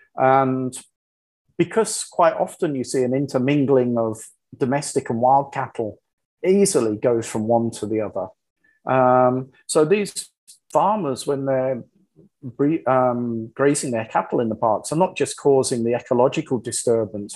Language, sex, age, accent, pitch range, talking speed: English, male, 30-49, British, 120-140 Hz, 140 wpm